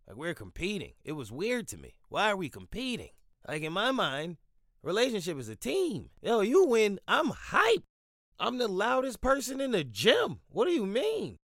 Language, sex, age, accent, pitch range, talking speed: English, male, 20-39, American, 120-170 Hz, 195 wpm